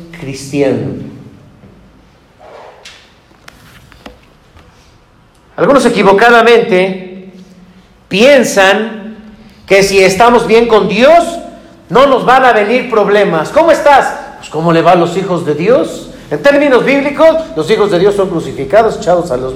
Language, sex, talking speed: Spanish, male, 120 wpm